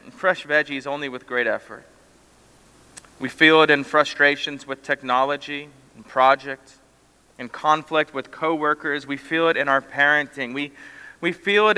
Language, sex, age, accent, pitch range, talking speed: English, male, 30-49, American, 125-160 Hz, 150 wpm